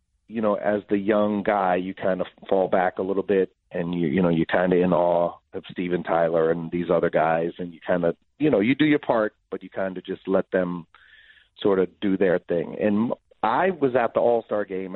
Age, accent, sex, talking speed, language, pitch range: 40-59, American, male, 235 wpm, English, 90-105 Hz